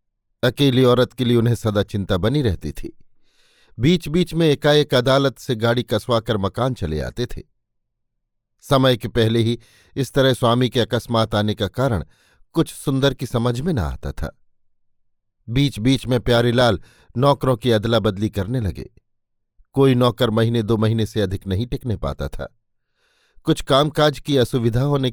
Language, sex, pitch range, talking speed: Hindi, male, 105-140 Hz, 160 wpm